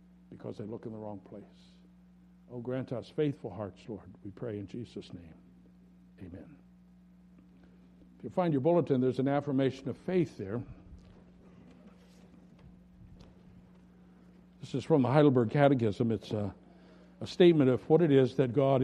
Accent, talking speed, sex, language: American, 145 wpm, male, English